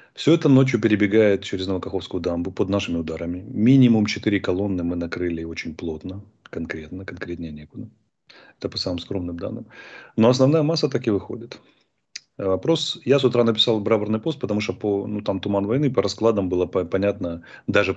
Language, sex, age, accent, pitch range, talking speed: Russian, male, 30-49, native, 90-115 Hz, 170 wpm